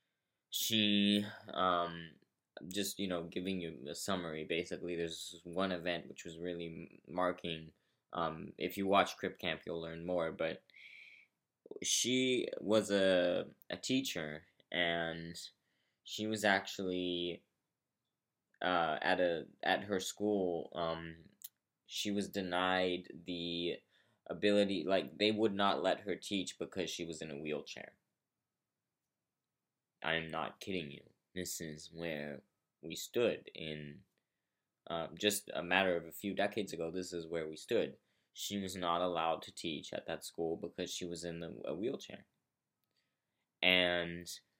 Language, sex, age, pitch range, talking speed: English, male, 20-39, 85-100 Hz, 140 wpm